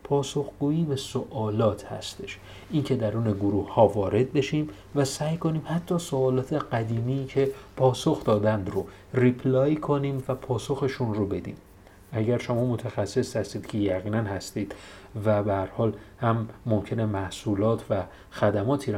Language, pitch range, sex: Persian, 105-130 Hz, male